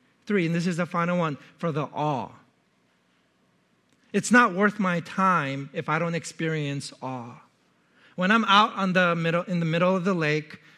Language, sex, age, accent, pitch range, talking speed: English, male, 40-59, American, 145-185 Hz, 180 wpm